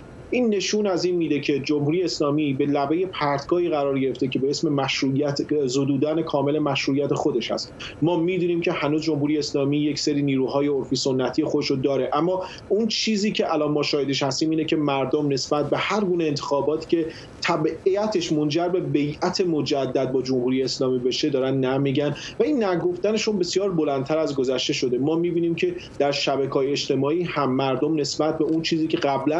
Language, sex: Persian, male